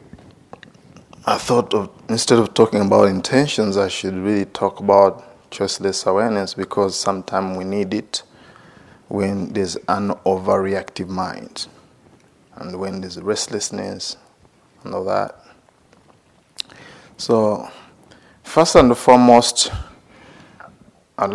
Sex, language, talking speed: male, English, 100 wpm